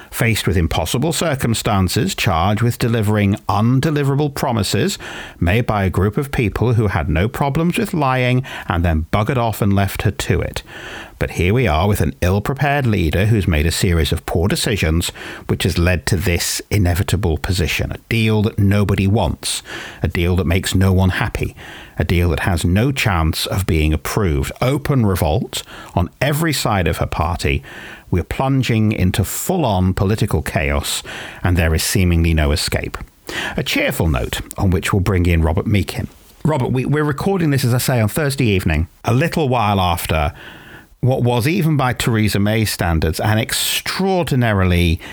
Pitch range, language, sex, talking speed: 90-125 Hz, English, male, 170 wpm